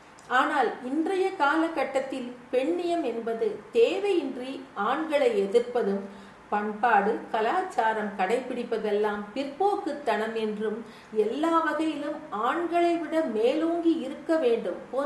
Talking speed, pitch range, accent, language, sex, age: 55 wpm, 230-315 Hz, native, Tamil, female, 50-69